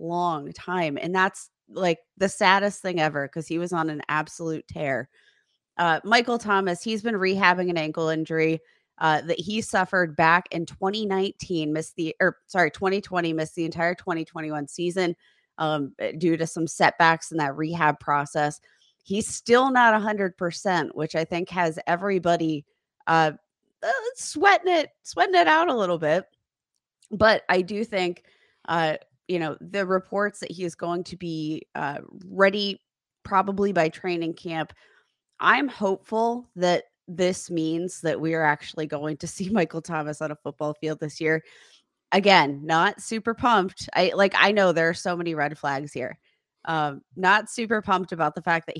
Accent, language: American, English